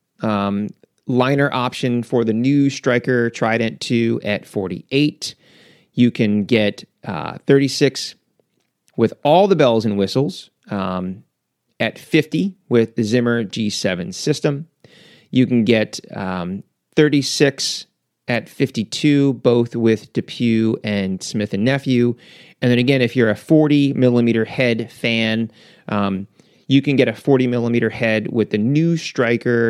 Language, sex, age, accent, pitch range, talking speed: English, male, 30-49, American, 110-140 Hz, 135 wpm